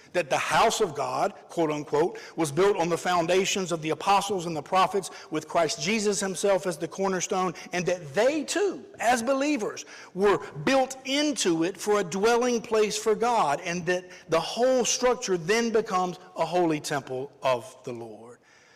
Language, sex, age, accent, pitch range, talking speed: English, male, 60-79, American, 160-215 Hz, 170 wpm